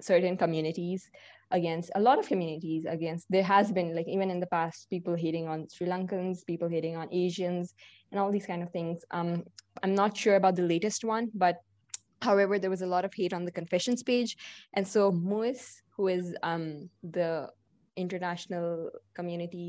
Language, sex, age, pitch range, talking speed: English, female, 20-39, 175-205 Hz, 185 wpm